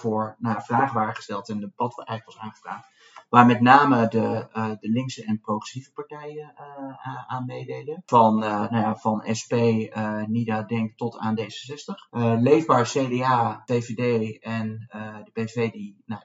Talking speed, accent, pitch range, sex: 170 wpm, Dutch, 110-135 Hz, male